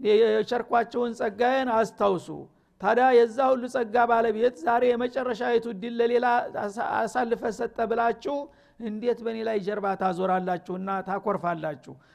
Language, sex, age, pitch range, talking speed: Amharic, male, 50-69, 200-240 Hz, 105 wpm